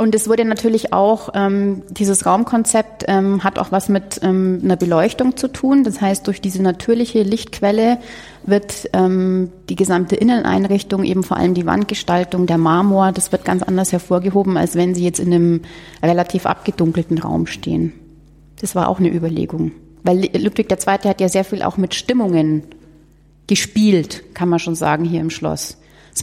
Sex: female